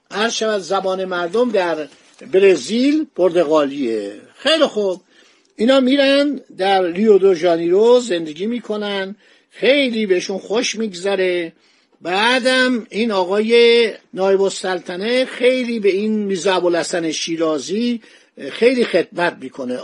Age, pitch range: 60-79, 185-240 Hz